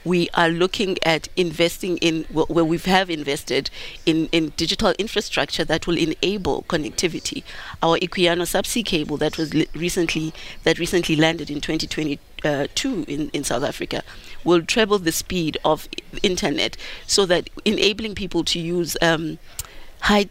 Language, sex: English, female